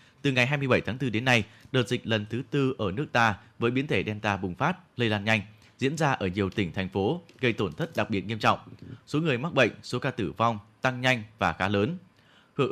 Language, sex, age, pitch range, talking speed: Vietnamese, male, 20-39, 105-135 Hz, 245 wpm